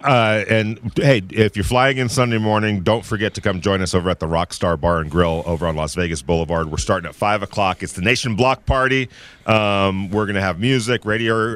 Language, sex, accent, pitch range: English, male, American, 90-110 Hz